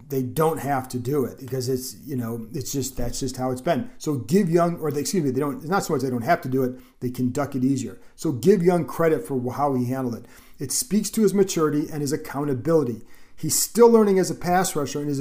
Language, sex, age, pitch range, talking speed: English, male, 40-59, 130-180 Hz, 265 wpm